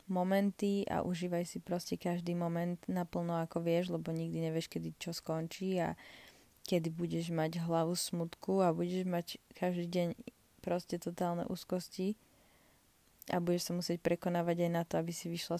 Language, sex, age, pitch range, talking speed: Slovak, female, 20-39, 175-205 Hz, 160 wpm